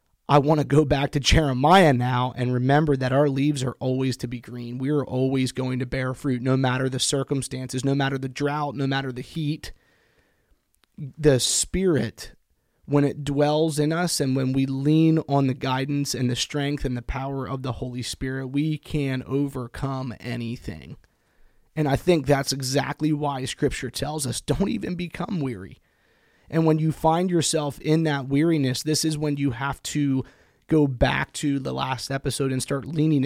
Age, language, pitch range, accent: 30-49, English, 130-145 Hz, American